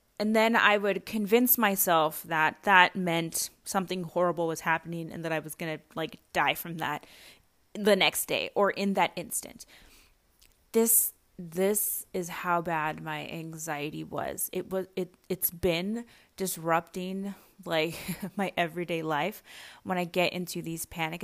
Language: English